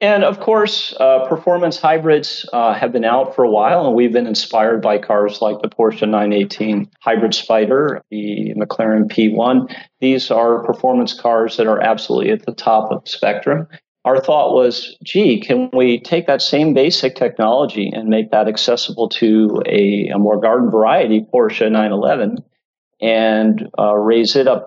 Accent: American